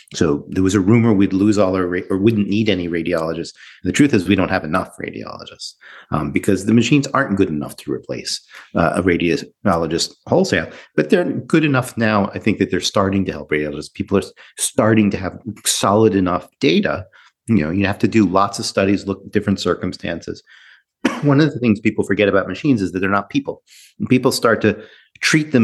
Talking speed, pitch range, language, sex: 200 wpm, 95-110 Hz, English, male